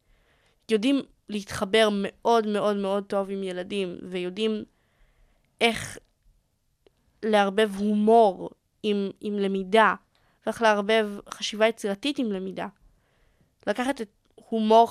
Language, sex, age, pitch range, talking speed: Hebrew, female, 20-39, 205-240 Hz, 95 wpm